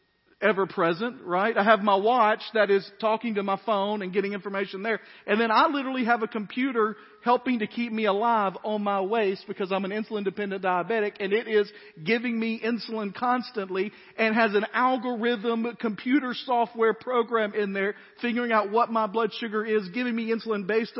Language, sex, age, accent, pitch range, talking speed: English, male, 50-69, American, 200-235 Hz, 185 wpm